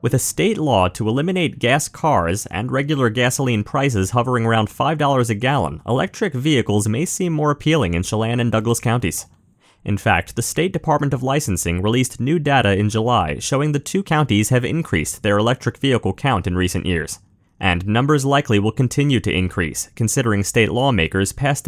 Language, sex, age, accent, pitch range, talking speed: English, male, 30-49, American, 100-135 Hz, 175 wpm